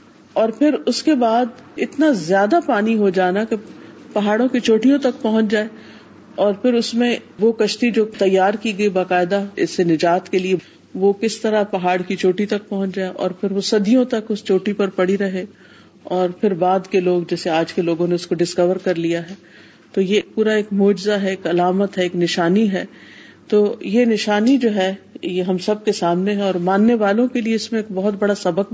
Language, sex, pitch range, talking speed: Urdu, female, 185-225 Hz, 215 wpm